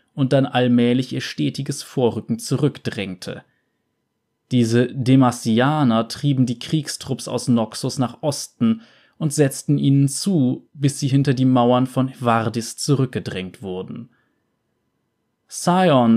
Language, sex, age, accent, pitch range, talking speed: German, male, 20-39, German, 120-140 Hz, 110 wpm